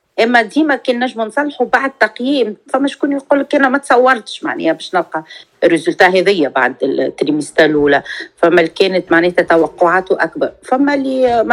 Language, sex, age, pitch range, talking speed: Arabic, female, 40-59, 180-290 Hz, 150 wpm